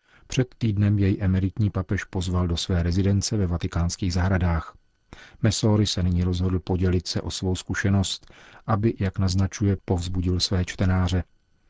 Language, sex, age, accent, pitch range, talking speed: Czech, male, 40-59, native, 90-105 Hz, 140 wpm